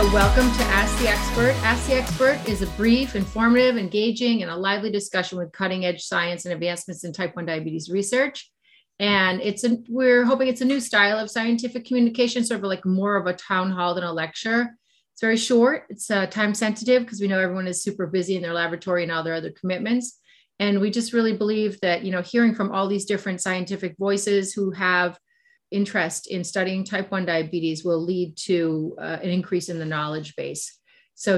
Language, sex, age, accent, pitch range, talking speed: English, female, 30-49, American, 180-225 Hz, 200 wpm